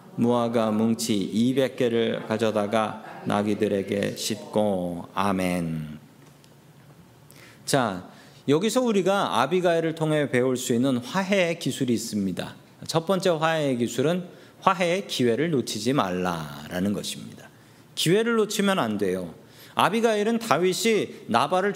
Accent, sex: native, male